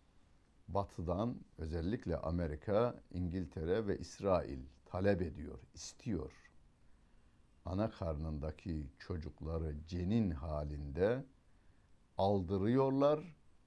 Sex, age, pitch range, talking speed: male, 60-79, 80-100 Hz, 65 wpm